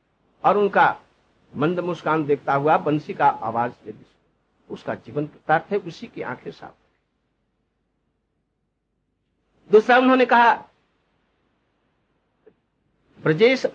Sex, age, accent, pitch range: male, 60-79, native, 175-240 Hz